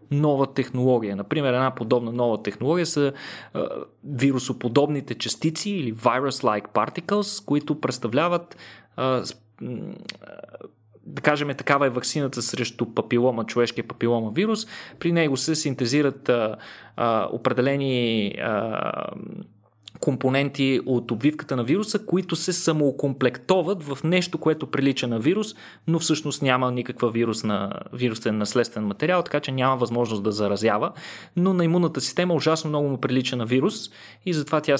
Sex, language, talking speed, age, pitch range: male, Bulgarian, 135 wpm, 20-39, 120-165 Hz